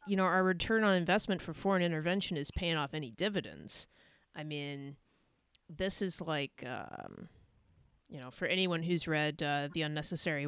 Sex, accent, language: female, American, English